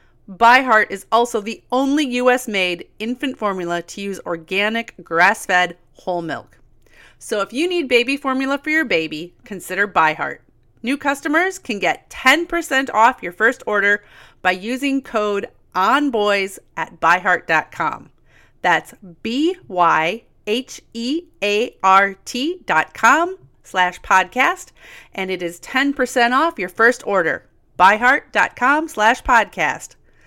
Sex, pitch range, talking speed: female, 190-265 Hz, 115 wpm